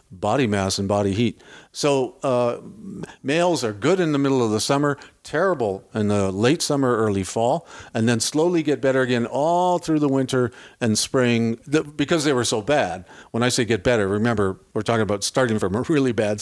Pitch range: 110-135 Hz